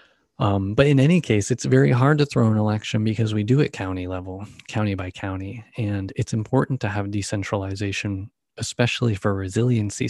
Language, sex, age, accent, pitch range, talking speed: English, male, 30-49, American, 100-120 Hz, 180 wpm